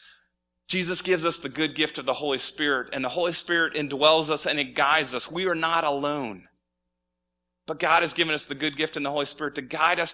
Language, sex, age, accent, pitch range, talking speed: English, male, 30-49, American, 110-165 Hz, 230 wpm